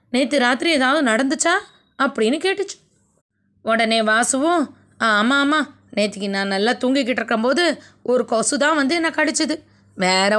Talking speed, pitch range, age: 135 wpm, 220-295 Hz, 20-39